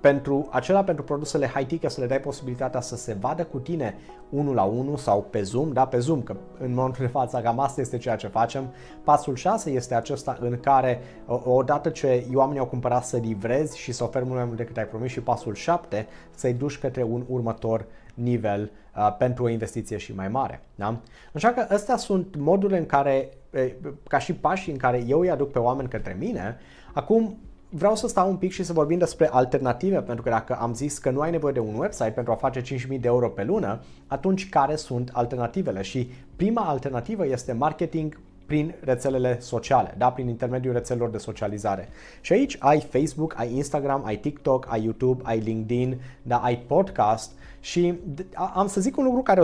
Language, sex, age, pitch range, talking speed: Romanian, male, 30-49, 120-150 Hz, 200 wpm